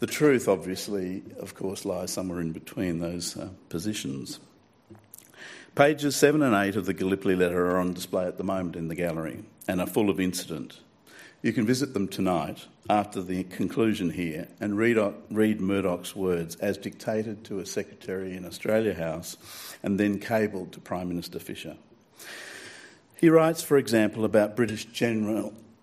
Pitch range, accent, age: 90-110 Hz, Australian, 50-69